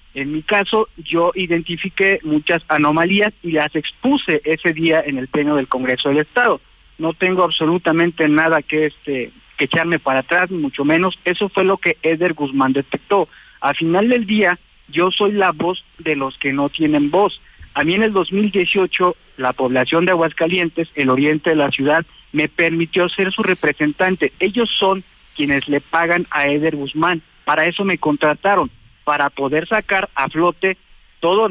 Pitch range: 150-195 Hz